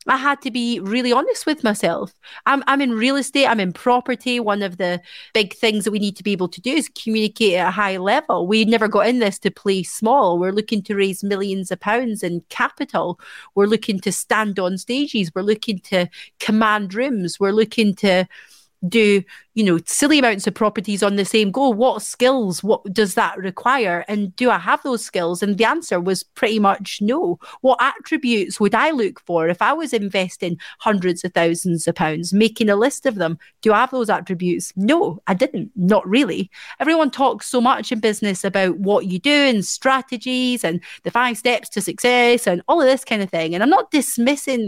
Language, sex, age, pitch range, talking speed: English, female, 30-49, 190-245 Hz, 210 wpm